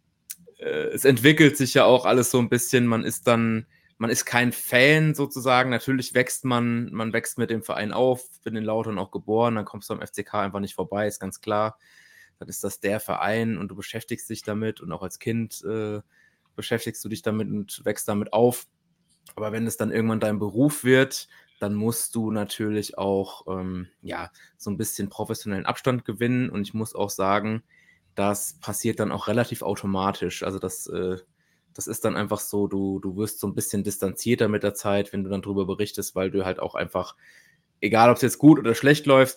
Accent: German